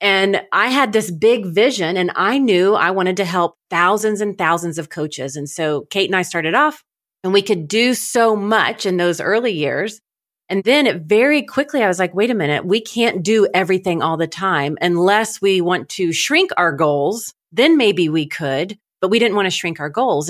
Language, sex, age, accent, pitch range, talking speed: English, female, 30-49, American, 165-210 Hz, 210 wpm